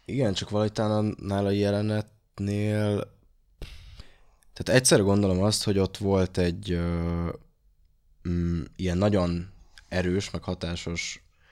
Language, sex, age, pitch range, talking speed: Hungarian, male, 20-39, 85-105 Hz, 105 wpm